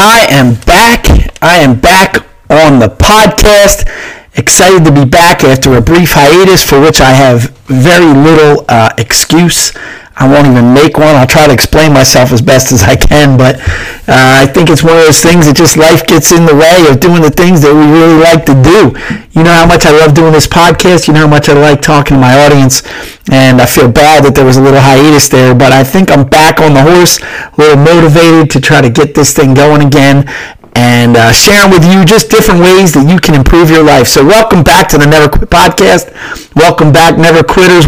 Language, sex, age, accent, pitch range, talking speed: English, male, 50-69, American, 135-165 Hz, 225 wpm